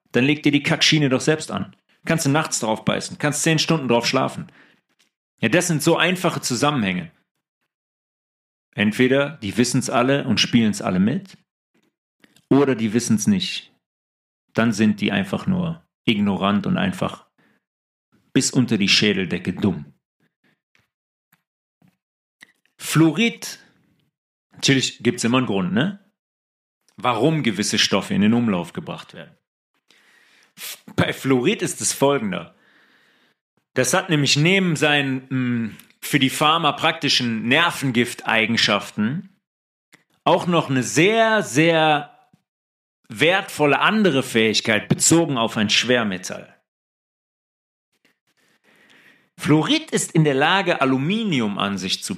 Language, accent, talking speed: German, German, 120 wpm